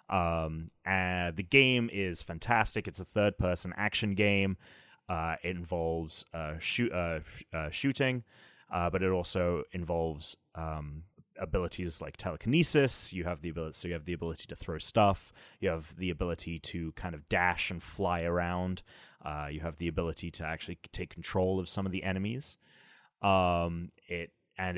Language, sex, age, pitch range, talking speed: English, male, 30-49, 85-105 Hz, 165 wpm